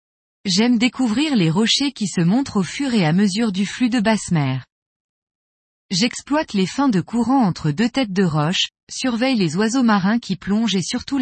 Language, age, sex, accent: French, 20-39, female, French